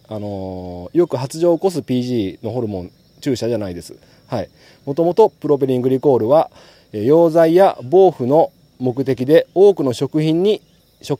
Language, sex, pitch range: Japanese, male, 125-190 Hz